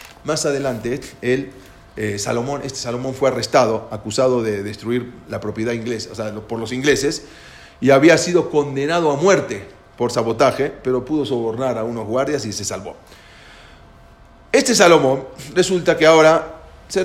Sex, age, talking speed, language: male, 40-59, 150 wpm, English